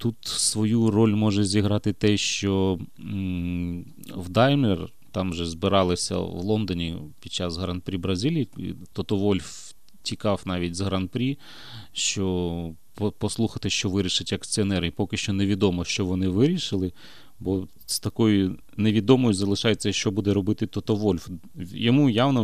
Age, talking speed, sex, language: 30-49, 125 wpm, male, Ukrainian